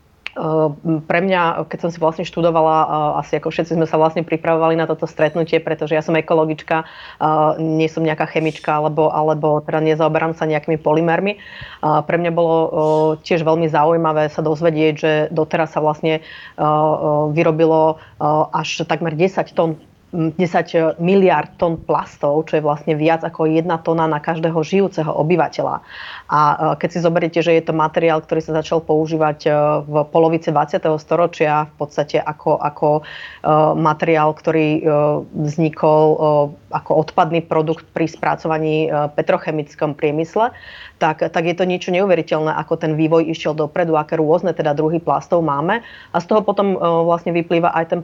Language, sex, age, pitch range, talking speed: Slovak, female, 30-49, 155-165 Hz, 150 wpm